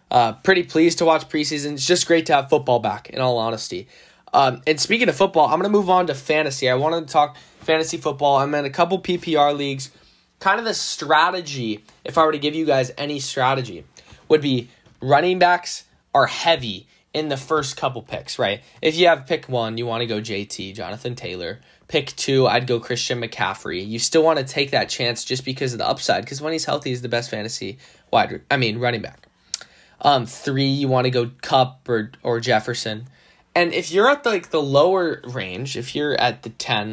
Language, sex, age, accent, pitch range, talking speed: English, male, 10-29, American, 120-155 Hz, 215 wpm